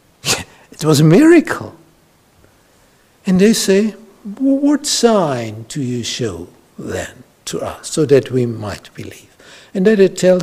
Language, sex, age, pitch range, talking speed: English, male, 60-79, 130-190 Hz, 140 wpm